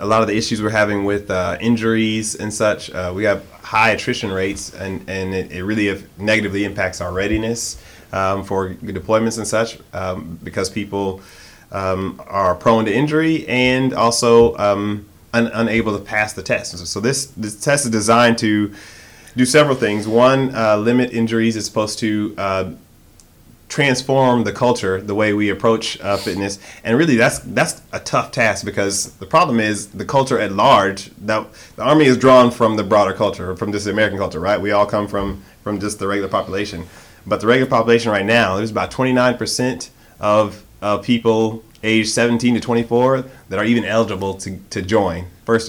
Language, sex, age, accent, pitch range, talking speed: English, male, 30-49, American, 95-115 Hz, 185 wpm